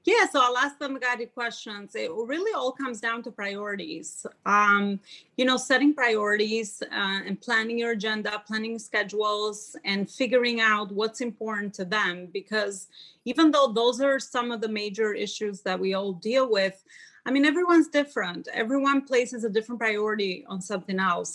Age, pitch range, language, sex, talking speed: 30-49, 205-260 Hz, English, female, 170 wpm